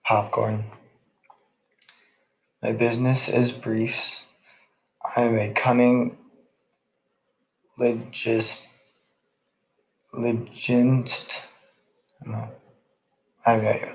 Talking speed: 70 wpm